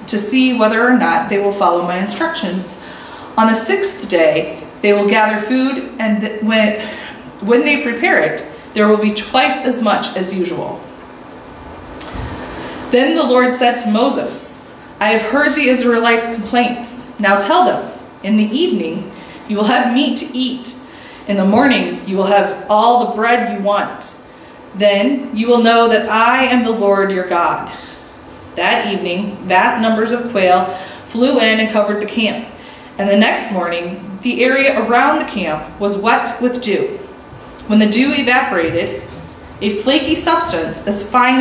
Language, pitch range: English, 200-255 Hz